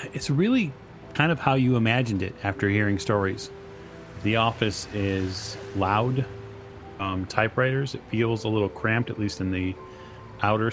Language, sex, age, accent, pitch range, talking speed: English, male, 30-49, American, 95-120 Hz, 150 wpm